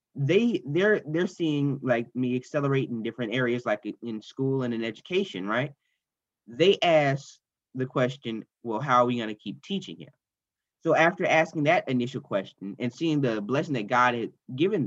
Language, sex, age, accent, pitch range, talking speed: English, male, 20-39, American, 120-155 Hz, 180 wpm